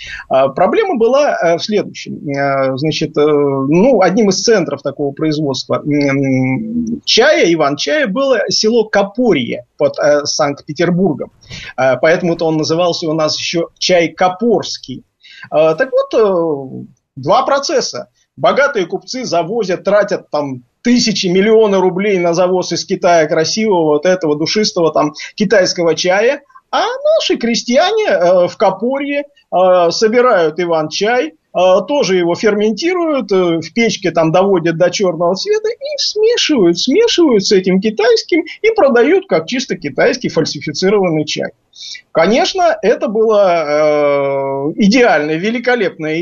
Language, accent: Russian, native